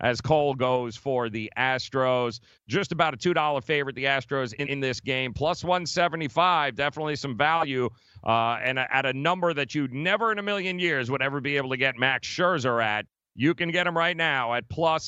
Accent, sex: American, male